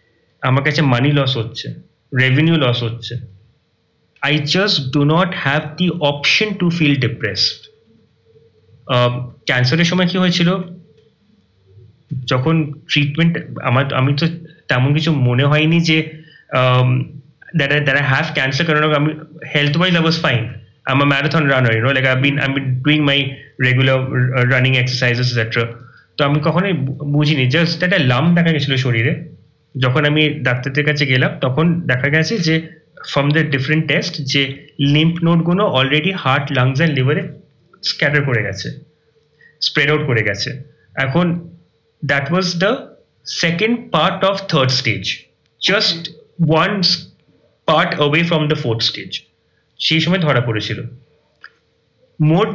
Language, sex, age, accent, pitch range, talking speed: Bengali, male, 30-49, native, 130-165 Hz, 125 wpm